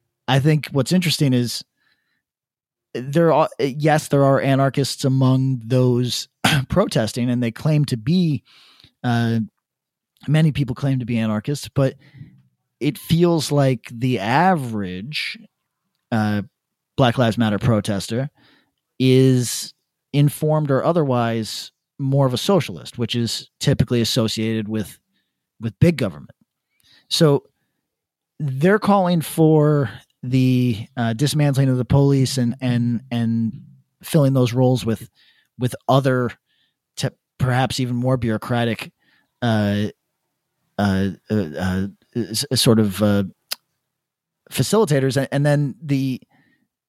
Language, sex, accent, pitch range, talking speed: English, male, American, 115-150 Hz, 115 wpm